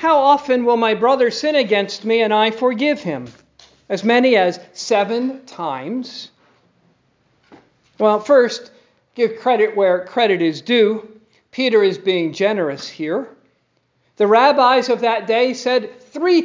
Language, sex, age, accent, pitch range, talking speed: English, male, 50-69, American, 195-255 Hz, 135 wpm